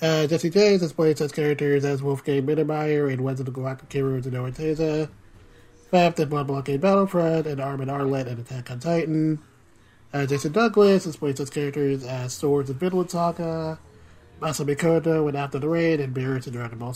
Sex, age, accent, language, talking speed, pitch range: male, 30-49, American, English, 195 wpm, 130-160 Hz